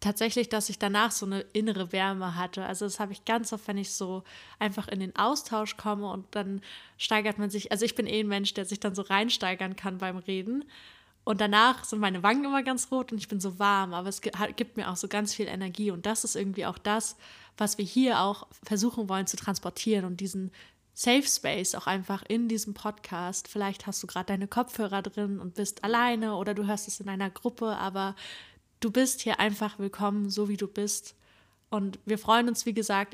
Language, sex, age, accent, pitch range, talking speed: German, female, 20-39, German, 195-220 Hz, 215 wpm